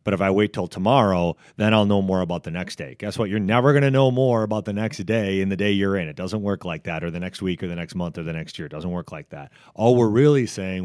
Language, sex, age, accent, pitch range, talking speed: English, male, 30-49, American, 90-110 Hz, 315 wpm